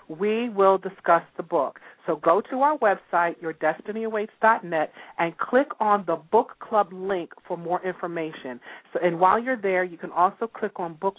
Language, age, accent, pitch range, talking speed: English, 40-59, American, 170-220 Hz, 170 wpm